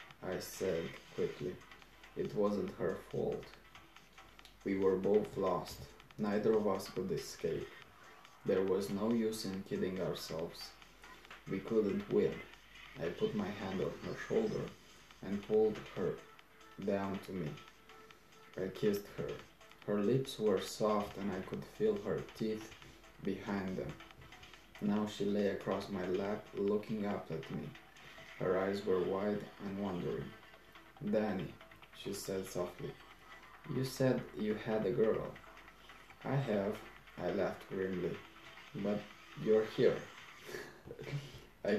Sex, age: male, 20-39